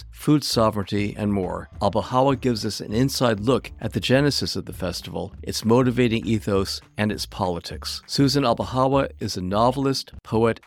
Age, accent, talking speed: 50-69, American, 155 wpm